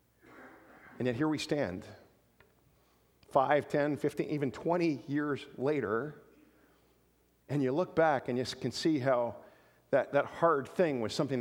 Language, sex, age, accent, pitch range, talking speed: English, male, 50-69, American, 130-185 Hz, 140 wpm